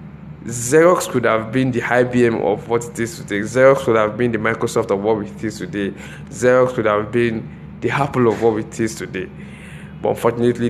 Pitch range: 110-125 Hz